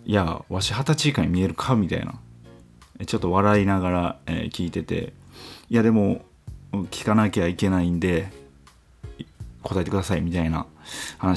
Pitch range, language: 85-120 Hz, Japanese